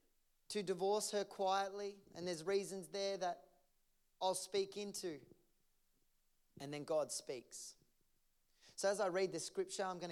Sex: male